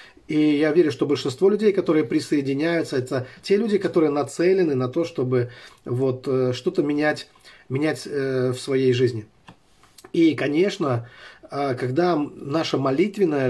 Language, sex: Russian, male